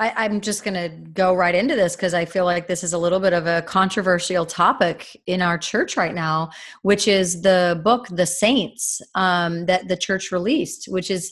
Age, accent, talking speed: 30-49, American, 210 wpm